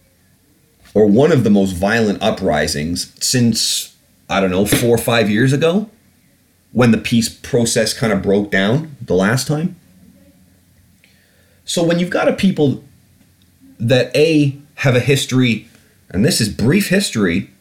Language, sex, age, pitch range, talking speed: English, male, 30-49, 95-140 Hz, 145 wpm